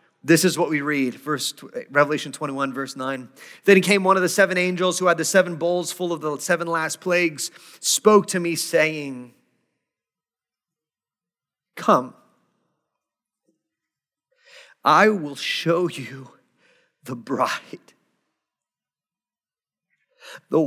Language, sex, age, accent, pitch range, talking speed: English, male, 40-59, American, 135-200 Hz, 115 wpm